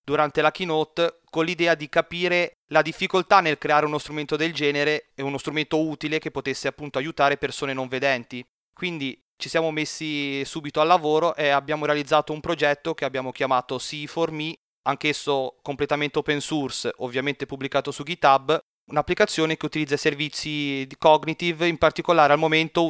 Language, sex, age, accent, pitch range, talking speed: Italian, male, 30-49, native, 140-165 Hz, 155 wpm